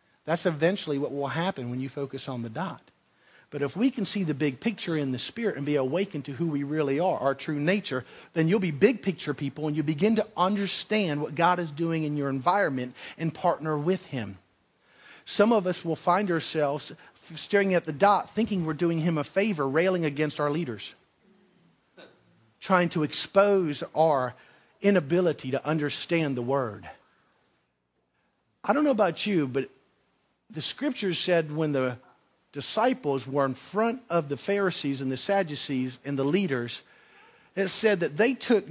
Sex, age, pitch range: male, 50-69, 135-190 Hz